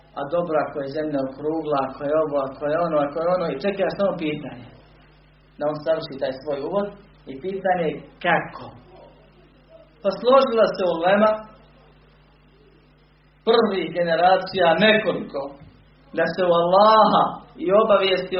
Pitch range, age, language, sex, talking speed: 145-190 Hz, 40-59, Croatian, male, 140 wpm